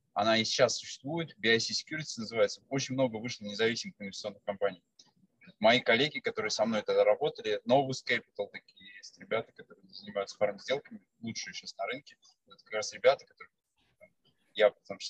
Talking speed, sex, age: 145 wpm, male, 20-39